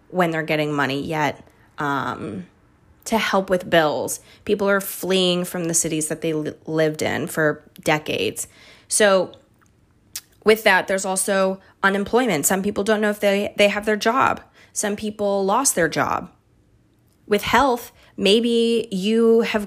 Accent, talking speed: American, 150 wpm